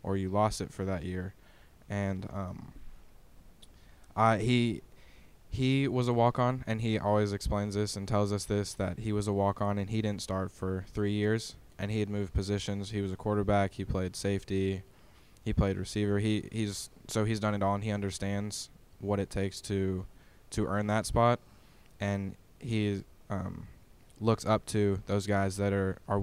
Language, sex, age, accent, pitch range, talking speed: English, male, 10-29, American, 95-105 Hz, 185 wpm